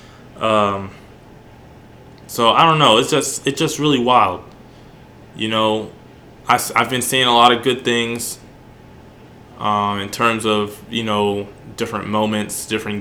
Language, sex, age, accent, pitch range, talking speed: English, male, 20-39, American, 105-115 Hz, 145 wpm